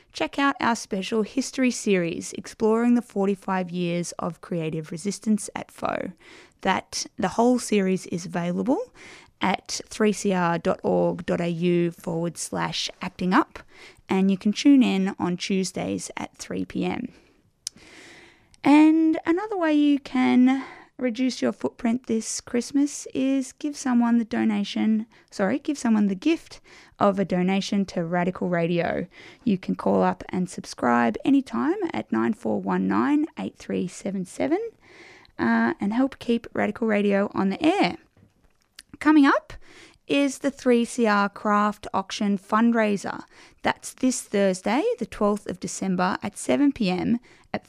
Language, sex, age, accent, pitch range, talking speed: English, female, 20-39, Australian, 185-260 Hz, 125 wpm